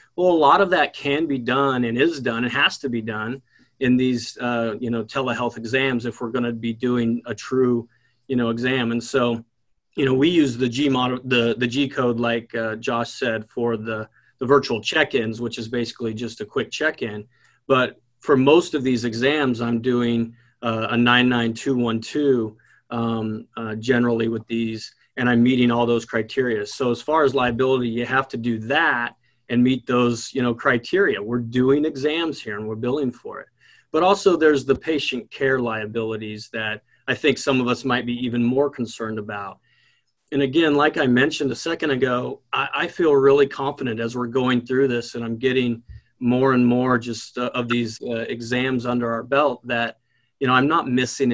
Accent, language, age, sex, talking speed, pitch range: American, English, 30-49, male, 195 wpm, 115-135 Hz